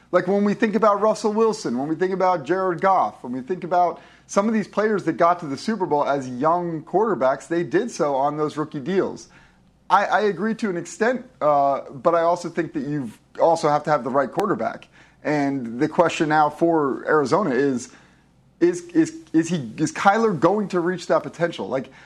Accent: American